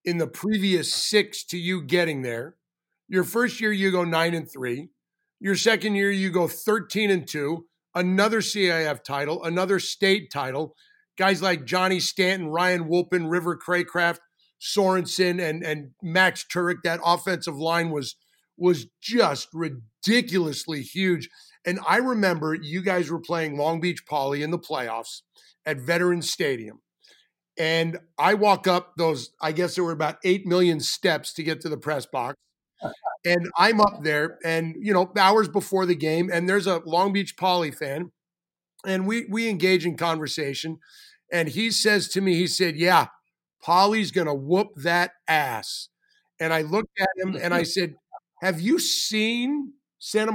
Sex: male